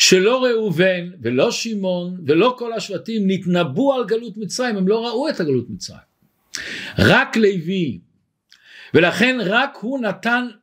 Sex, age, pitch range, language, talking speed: male, 50-69, 165-230 Hz, Hebrew, 130 wpm